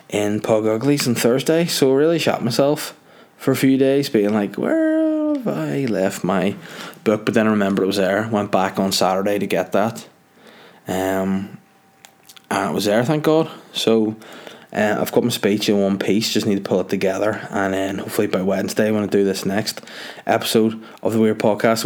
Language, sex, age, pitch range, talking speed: English, male, 20-39, 100-115 Hz, 200 wpm